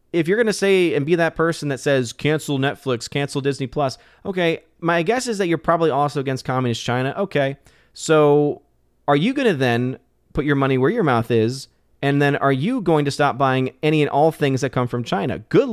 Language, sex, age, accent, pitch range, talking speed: English, male, 30-49, American, 110-145 Hz, 220 wpm